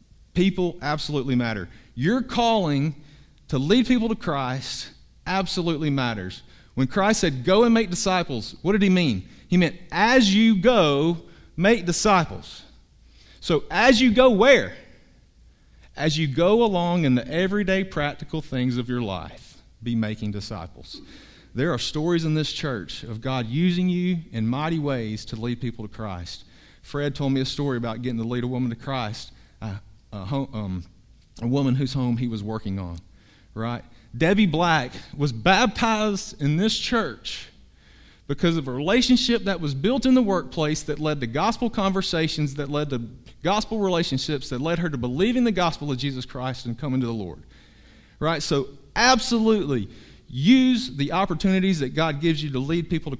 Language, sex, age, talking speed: English, male, 40-59, 165 wpm